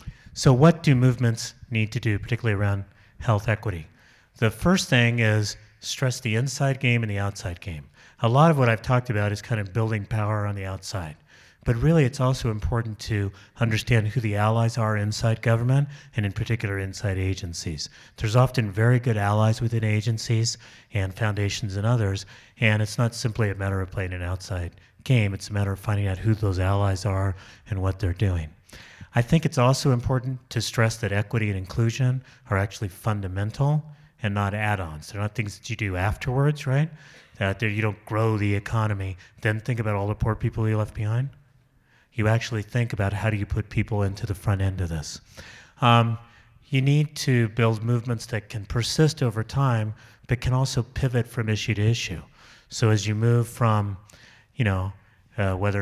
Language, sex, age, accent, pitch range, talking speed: English, male, 30-49, American, 100-120 Hz, 190 wpm